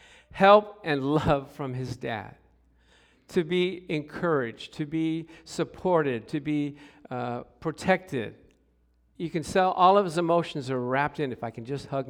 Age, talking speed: 50-69, 155 wpm